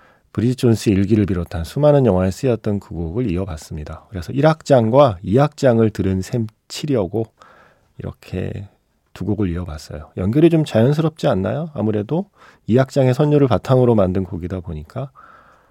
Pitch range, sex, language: 90-125 Hz, male, Korean